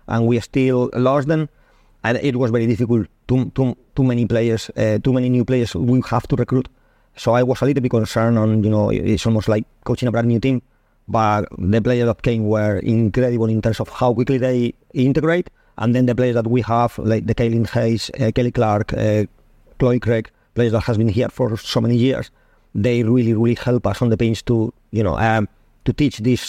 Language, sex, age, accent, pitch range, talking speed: English, male, 30-49, Spanish, 115-130 Hz, 220 wpm